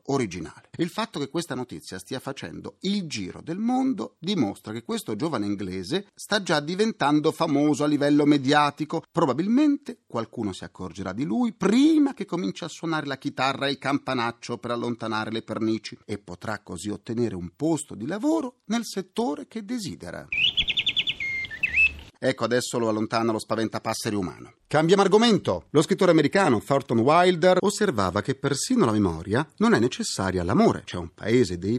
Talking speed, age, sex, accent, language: 155 wpm, 40-59, male, native, Italian